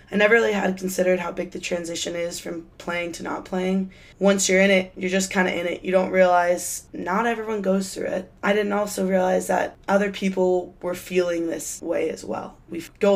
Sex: female